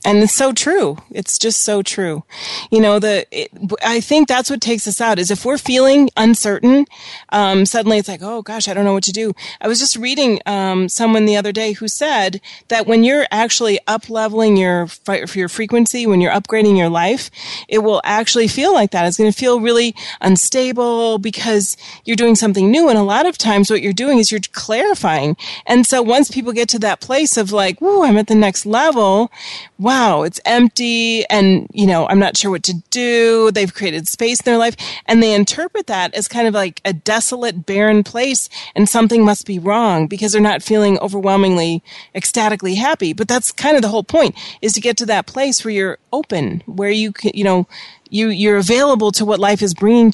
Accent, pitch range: American, 200-235 Hz